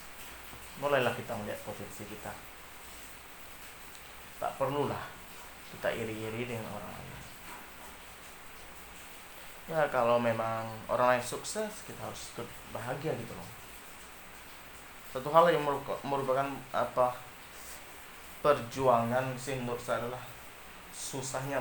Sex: male